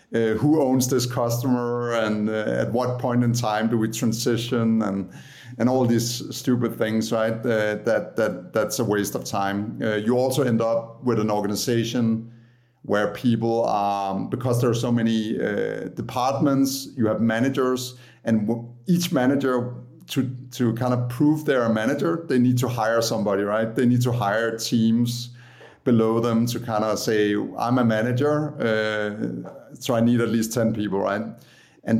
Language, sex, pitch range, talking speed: English, male, 105-125 Hz, 175 wpm